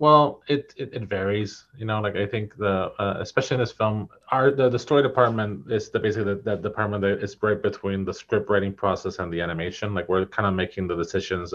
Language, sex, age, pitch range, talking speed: English, male, 30-49, 95-110 Hz, 230 wpm